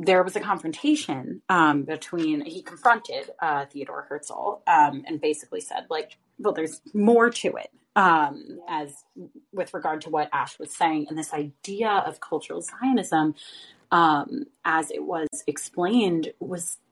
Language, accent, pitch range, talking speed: English, American, 160-195 Hz, 150 wpm